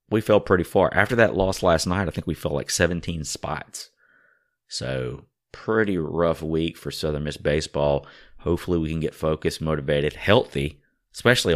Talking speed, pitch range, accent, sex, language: 165 wpm, 75-95 Hz, American, male, English